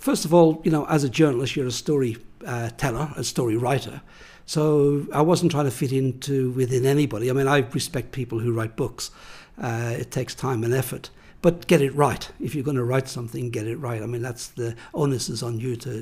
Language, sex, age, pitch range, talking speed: English, male, 60-79, 120-145 Hz, 230 wpm